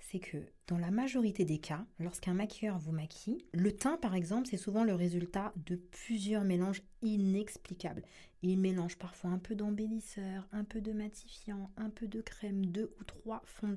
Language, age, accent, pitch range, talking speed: French, 40-59, French, 175-225 Hz, 180 wpm